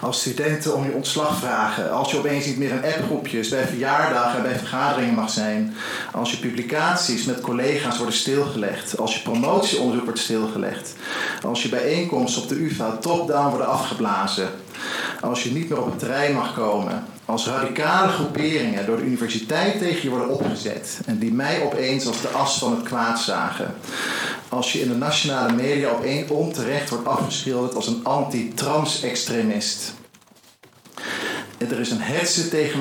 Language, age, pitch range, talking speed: Dutch, 40-59, 120-150 Hz, 165 wpm